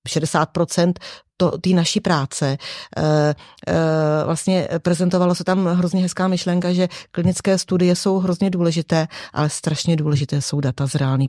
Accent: native